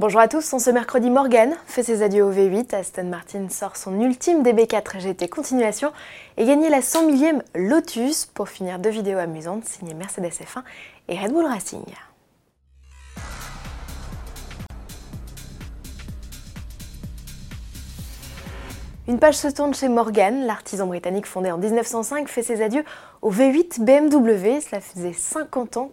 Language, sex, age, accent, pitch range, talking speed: French, female, 20-39, French, 185-255 Hz, 135 wpm